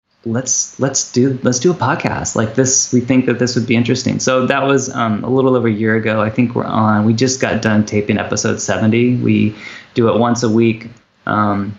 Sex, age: male, 20-39